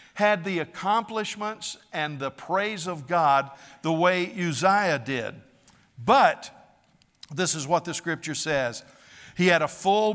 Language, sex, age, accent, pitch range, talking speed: English, male, 60-79, American, 150-190 Hz, 135 wpm